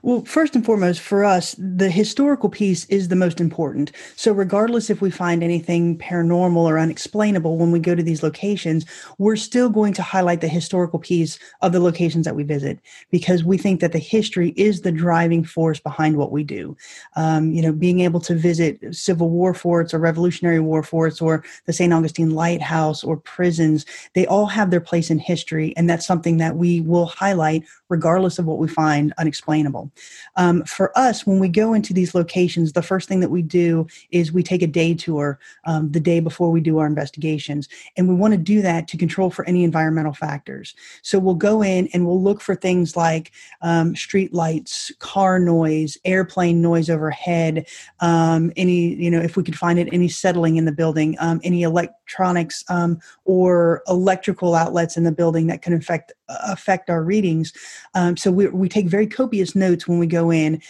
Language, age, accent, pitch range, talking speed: English, 30-49, American, 165-185 Hz, 195 wpm